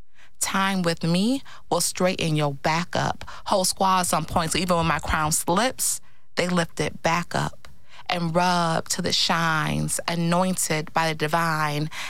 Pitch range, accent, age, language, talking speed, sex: 145-170 Hz, American, 30-49, English, 155 wpm, female